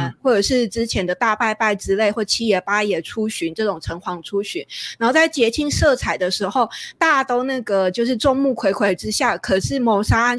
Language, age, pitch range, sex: Chinese, 20-39, 195-245 Hz, female